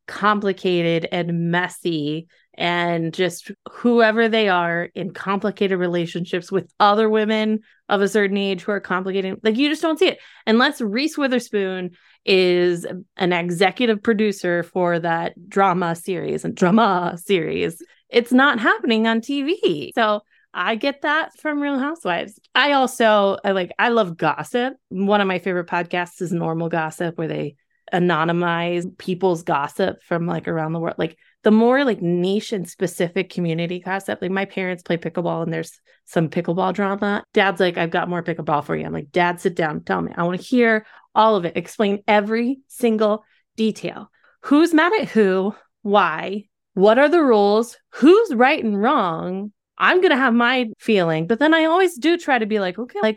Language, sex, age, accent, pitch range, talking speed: English, female, 20-39, American, 175-235 Hz, 170 wpm